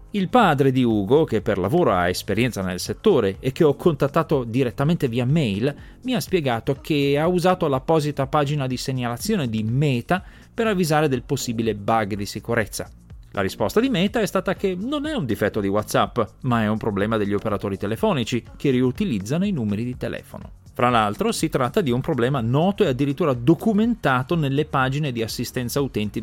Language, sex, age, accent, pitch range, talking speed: Italian, male, 30-49, native, 110-165 Hz, 180 wpm